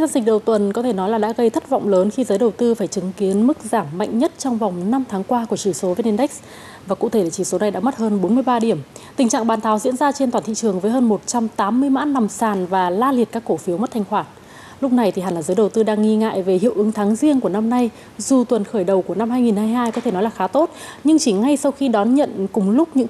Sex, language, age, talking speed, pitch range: female, Vietnamese, 20-39, 290 wpm, 200-260 Hz